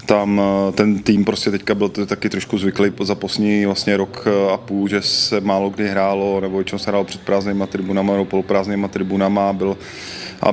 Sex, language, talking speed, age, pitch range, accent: male, Czech, 180 wpm, 20-39, 95-105 Hz, native